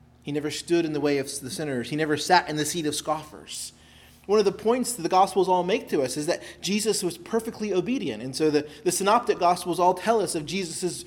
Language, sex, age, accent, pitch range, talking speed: English, male, 30-49, American, 120-195 Hz, 245 wpm